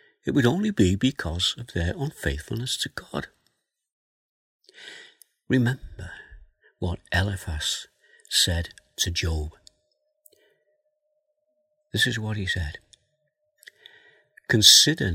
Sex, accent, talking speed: male, British, 85 wpm